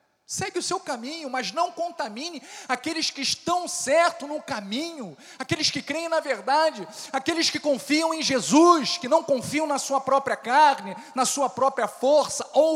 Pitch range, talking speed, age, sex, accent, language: 225-295 Hz, 165 wpm, 40-59, male, Brazilian, Portuguese